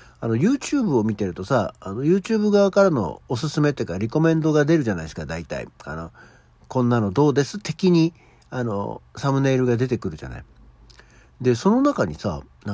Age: 60-79